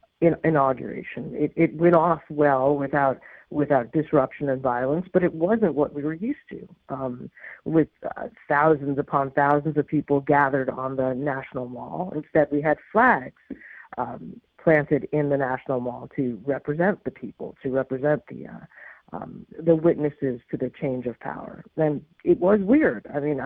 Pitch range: 135-160 Hz